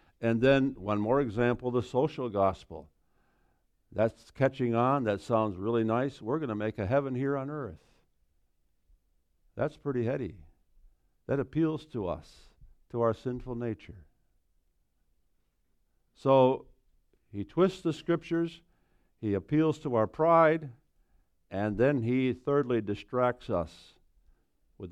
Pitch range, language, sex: 85-125 Hz, English, male